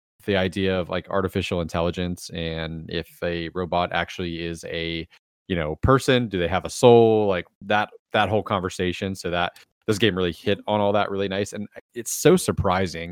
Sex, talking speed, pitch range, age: male, 190 wpm, 85-105 Hz, 20-39